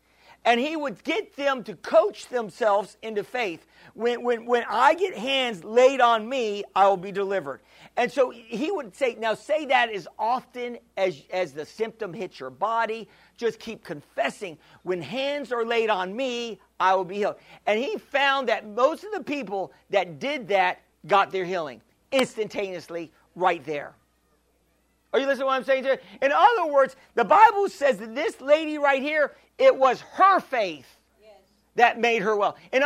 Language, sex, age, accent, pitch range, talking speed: English, male, 50-69, American, 210-305 Hz, 180 wpm